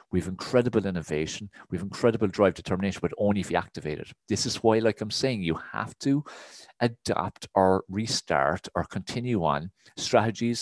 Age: 40-59